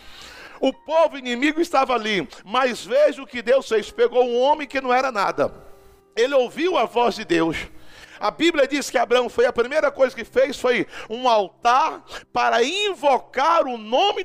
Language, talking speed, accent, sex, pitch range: Portuguese, 175 wpm, Brazilian, male, 235-300 Hz